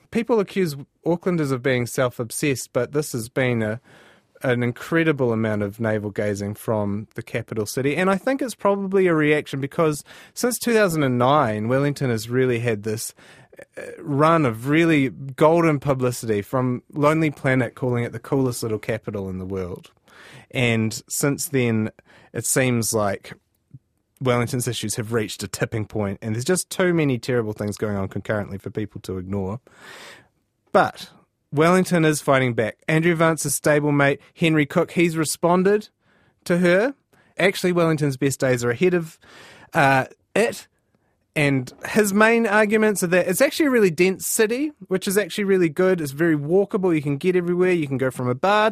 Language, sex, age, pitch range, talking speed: English, male, 30-49, 120-175 Hz, 165 wpm